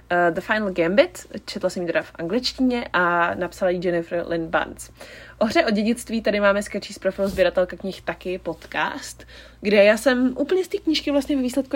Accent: native